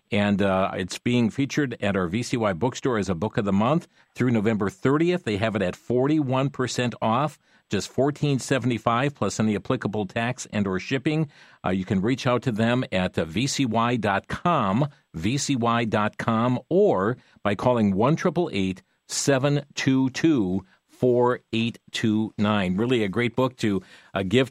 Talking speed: 135 wpm